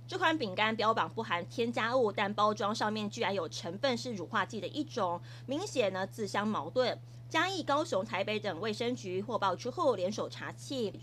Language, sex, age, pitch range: Chinese, female, 20-39, 195-255 Hz